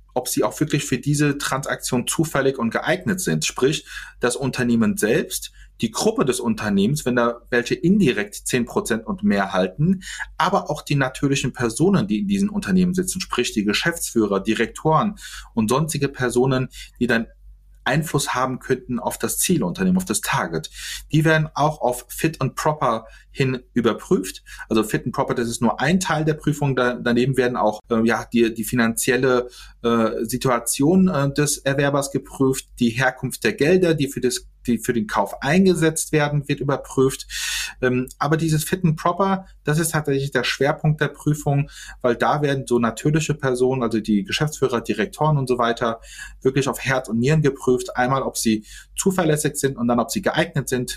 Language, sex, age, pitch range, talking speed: German, male, 30-49, 120-155 Hz, 170 wpm